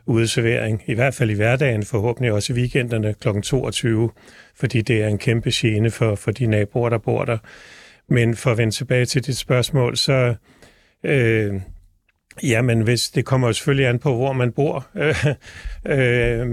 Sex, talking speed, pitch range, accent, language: male, 175 wpm, 115-130 Hz, native, Danish